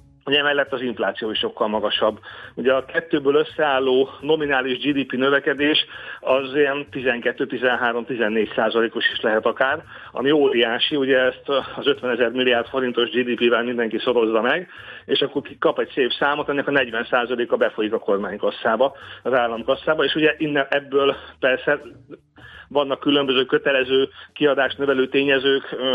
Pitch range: 125-140 Hz